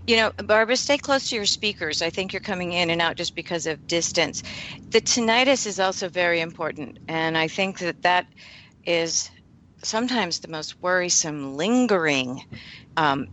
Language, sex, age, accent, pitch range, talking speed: English, female, 50-69, American, 160-205 Hz, 165 wpm